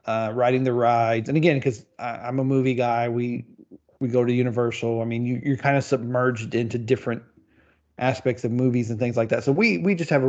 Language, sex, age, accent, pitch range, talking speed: English, male, 40-59, American, 115-135 Hz, 220 wpm